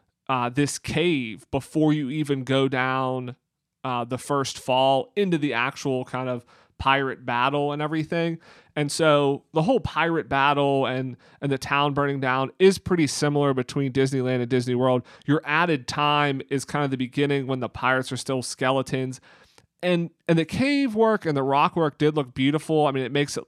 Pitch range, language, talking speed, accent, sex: 130-160 Hz, English, 185 wpm, American, male